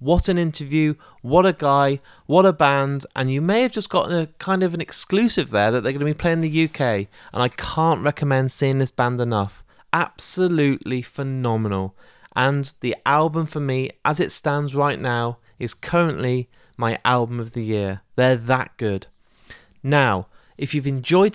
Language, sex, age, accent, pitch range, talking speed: English, male, 30-49, British, 125-155 Hz, 180 wpm